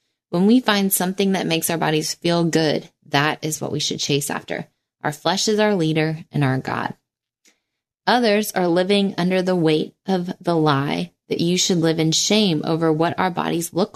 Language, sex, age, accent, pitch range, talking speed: English, female, 20-39, American, 155-195 Hz, 195 wpm